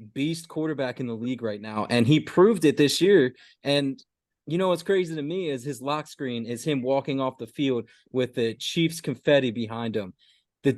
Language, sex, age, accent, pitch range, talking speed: English, male, 20-39, American, 120-155 Hz, 205 wpm